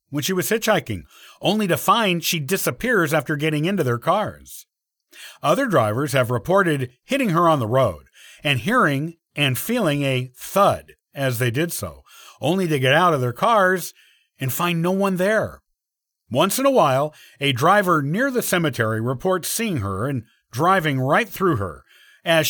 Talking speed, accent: 170 wpm, American